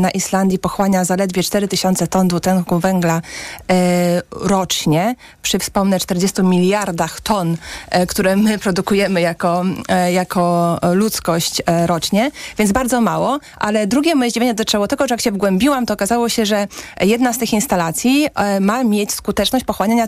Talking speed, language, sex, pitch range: 155 wpm, Polish, female, 190-220 Hz